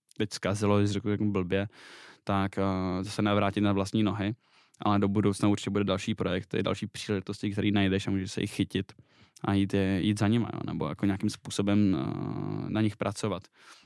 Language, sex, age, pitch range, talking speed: Czech, male, 10-29, 100-110 Hz, 180 wpm